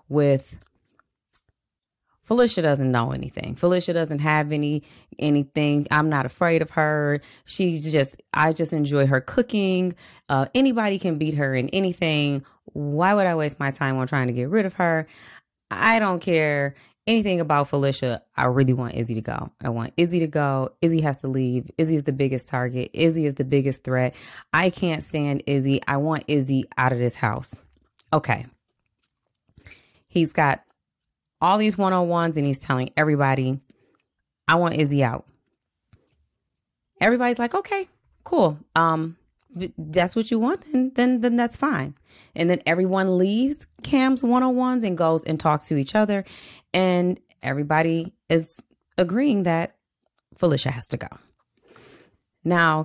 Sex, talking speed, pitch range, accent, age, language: female, 155 wpm, 140-180 Hz, American, 20-39, English